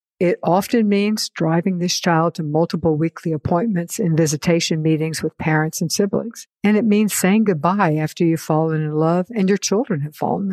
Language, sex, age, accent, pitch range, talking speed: English, female, 60-79, American, 160-195 Hz, 180 wpm